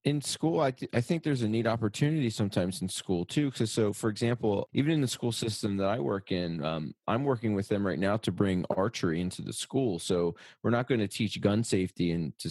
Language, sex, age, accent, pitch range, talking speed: English, male, 30-49, American, 90-115 Hz, 235 wpm